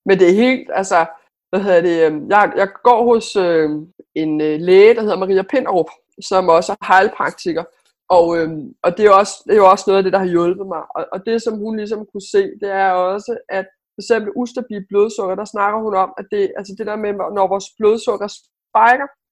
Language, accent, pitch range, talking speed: Danish, native, 195-245 Hz, 225 wpm